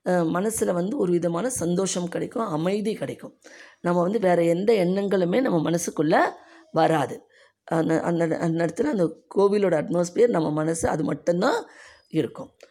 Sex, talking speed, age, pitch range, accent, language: female, 130 wpm, 20-39, 160-200 Hz, native, Tamil